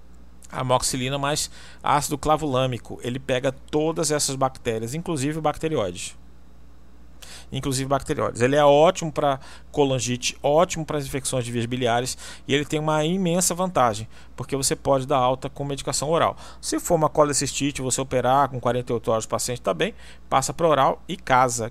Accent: Brazilian